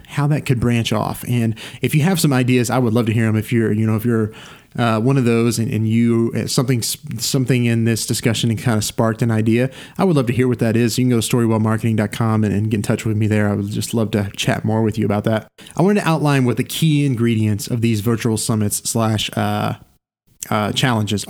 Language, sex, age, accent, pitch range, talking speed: English, male, 30-49, American, 110-135 Hz, 255 wpm